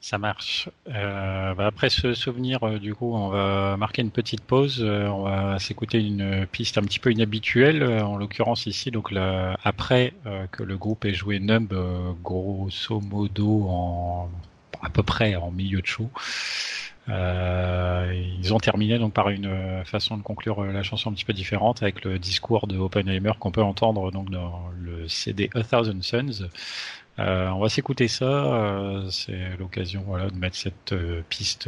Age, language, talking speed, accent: 30-49, French, 170 wpm, French